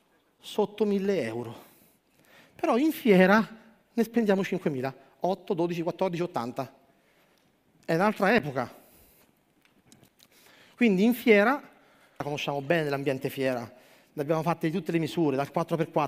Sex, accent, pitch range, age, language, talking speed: male, native, 165-220 Hz, 40-59, Italian, 115 wpm